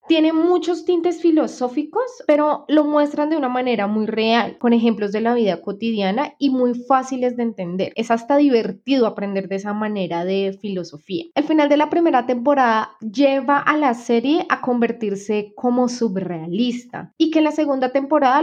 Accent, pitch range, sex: Colombian, 215-290 Hz, female